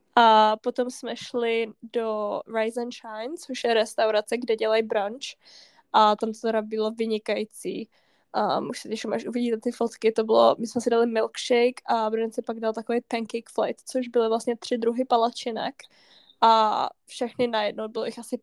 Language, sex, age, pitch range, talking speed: Czech, female, 10-29, 215-240 Hz, 175 wpm